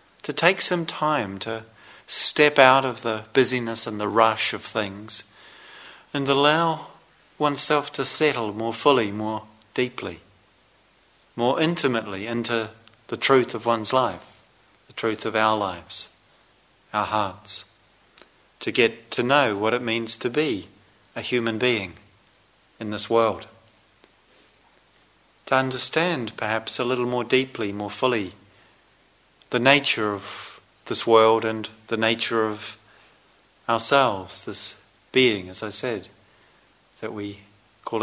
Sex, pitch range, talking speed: male, 105-125 Hz, 130 wpm